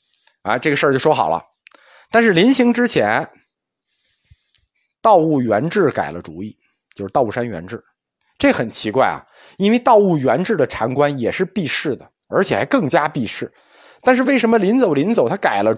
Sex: male